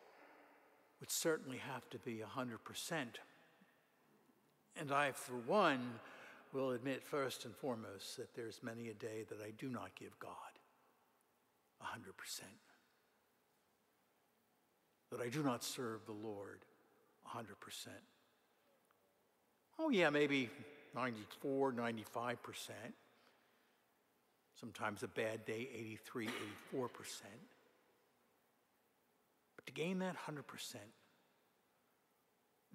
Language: English